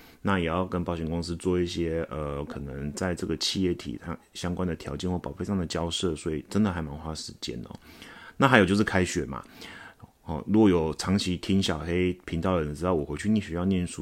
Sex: male